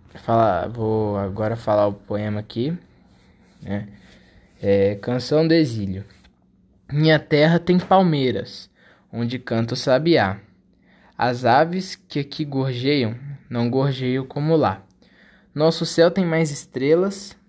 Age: 20-39